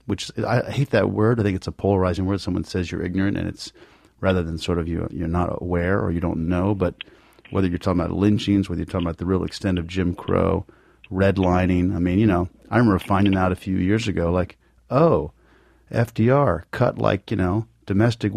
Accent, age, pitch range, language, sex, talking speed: American, 40-59, 85-100 Hz, English, male, 215 wpm